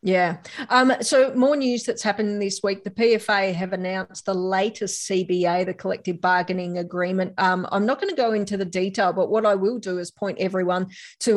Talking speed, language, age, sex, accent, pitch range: 200 wpm, English, 40-59, female, Australian, 180-205 Hz